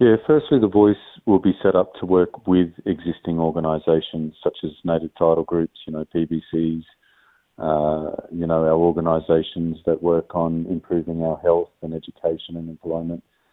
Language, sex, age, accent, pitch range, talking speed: English, male, 40-59, Australian, 85-95 Hz, 160 wpm